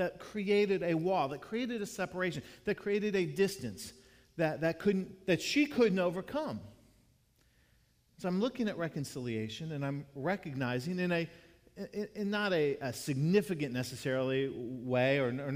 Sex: male